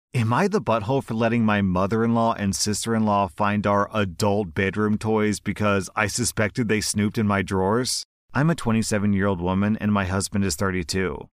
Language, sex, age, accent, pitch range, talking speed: English, male, 30-49, American, 95-115 Hz, 170 wpm